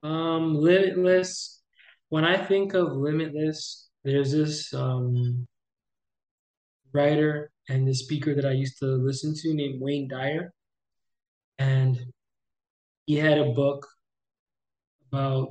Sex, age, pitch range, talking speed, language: male, 20-39, 135-155 Hz, 110 wpm, English